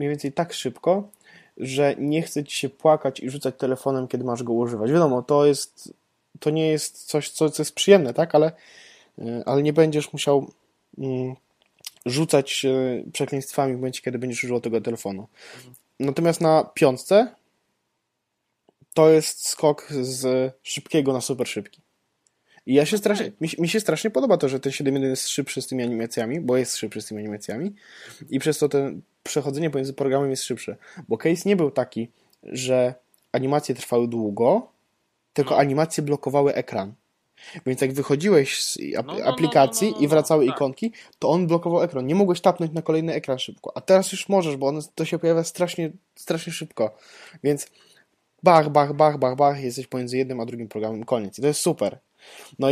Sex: male